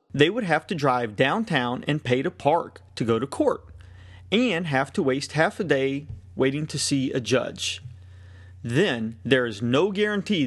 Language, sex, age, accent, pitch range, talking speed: English, male, 30-49, American, 115-155 Hz, 180 wpm